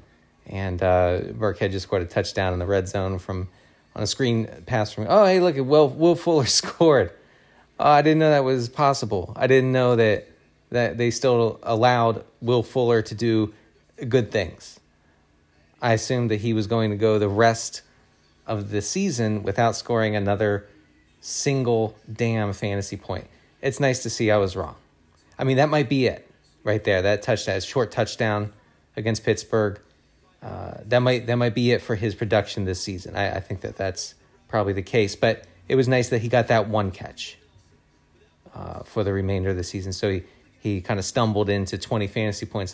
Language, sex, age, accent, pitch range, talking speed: English, male, 30-49, American, 100-120 Hz, 190 wpm